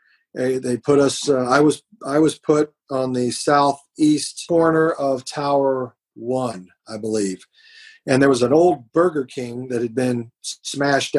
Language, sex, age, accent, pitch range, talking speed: English, male, 40-59, American, 130-155 Hz, 155 wpm